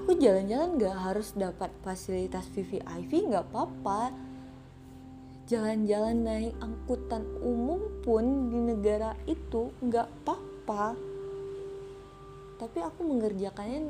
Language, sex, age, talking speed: Indonesian, female, 20-39, 95 wpm